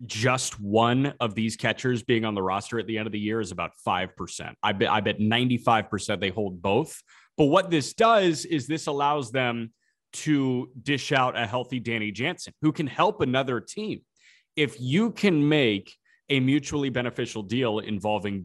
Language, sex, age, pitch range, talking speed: English, male, 30-49, 105-130 Hz, 180 wpm